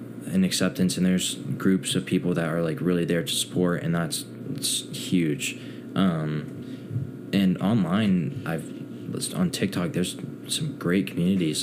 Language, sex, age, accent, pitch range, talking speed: English, male, 20-39, American, 80-95 Hz, 145 wpm